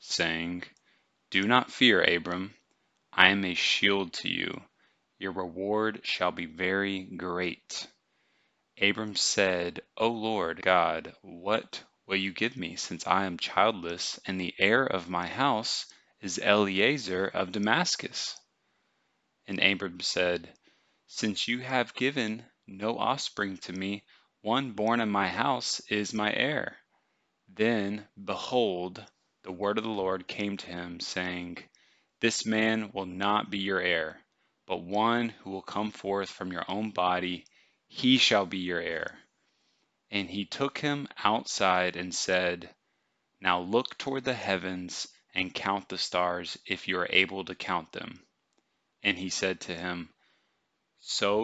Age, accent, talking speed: 20-39, American, 140 wpm